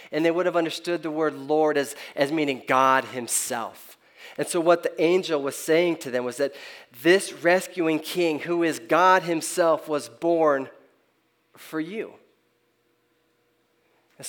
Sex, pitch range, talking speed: male, 130-165 Hz, 150 wpm